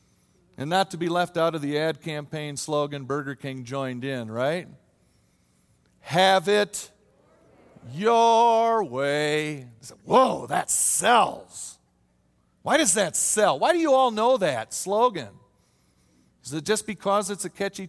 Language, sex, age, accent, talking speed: English, male, 50-69, American, 140 wpm